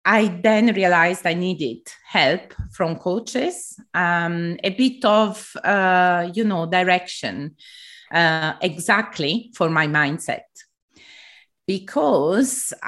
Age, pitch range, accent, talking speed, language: 30-49, 155-205 Hz, Italian, 100 wpm, English